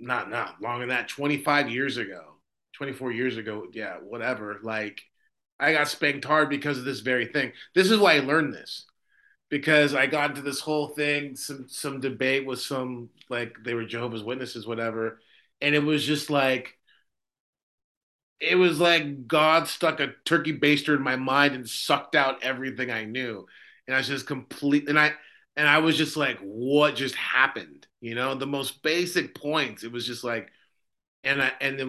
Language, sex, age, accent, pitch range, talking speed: English, male, 30-49, American, 125-150 Hz, 185 wpm